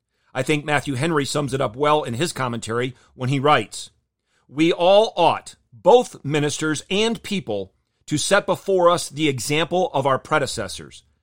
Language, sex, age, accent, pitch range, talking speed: English, male, 40-59, American, 125-170 Hz, 160 wpm